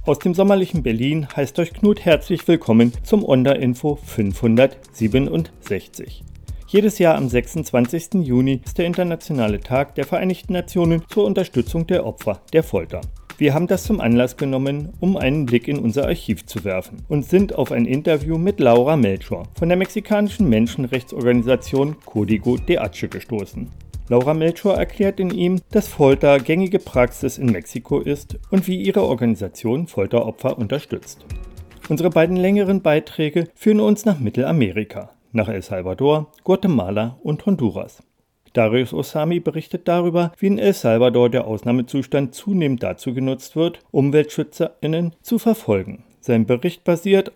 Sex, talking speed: male, 140 wpm